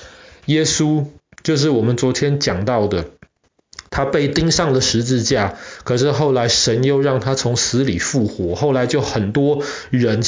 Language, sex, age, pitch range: Chinese, male, 20-39, 110-145 Hz